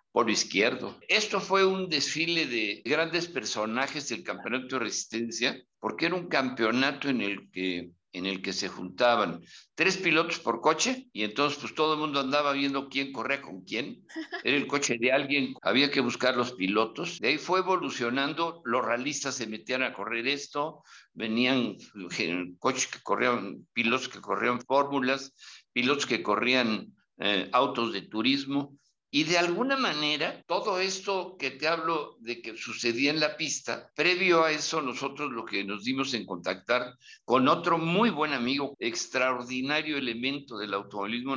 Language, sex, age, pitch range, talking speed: Spanish, male, 60-79, 120-155 Hz, 160 wpm